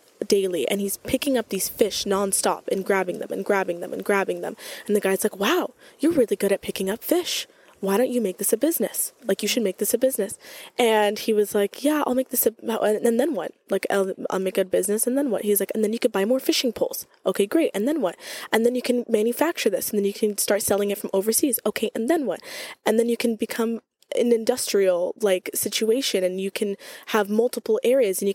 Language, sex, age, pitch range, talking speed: English, female, 10-29, 195-245 Hz, 240 wpm